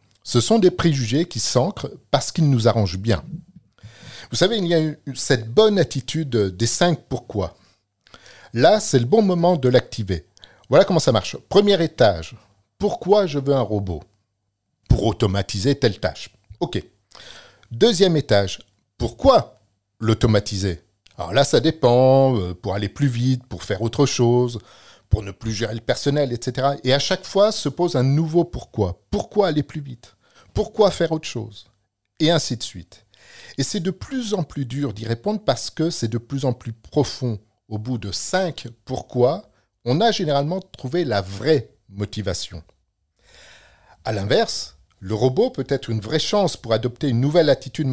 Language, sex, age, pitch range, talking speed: French, male, 50-69, 105-150 Hz, 165 wpm